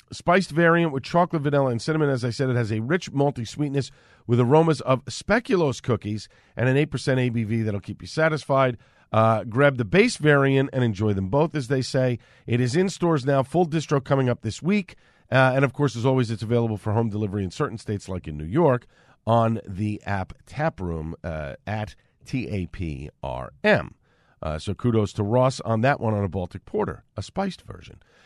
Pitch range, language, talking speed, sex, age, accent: 115-150 Hz, English, 195 wpm, male, 50-69, American